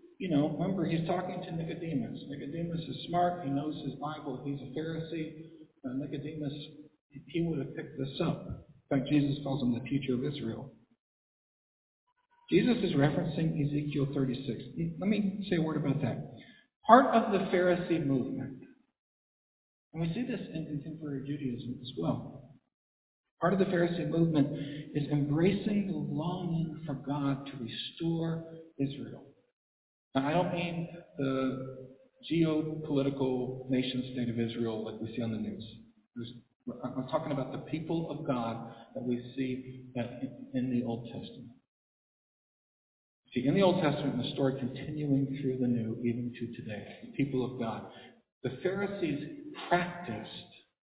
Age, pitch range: 50-69, 130-165 Hz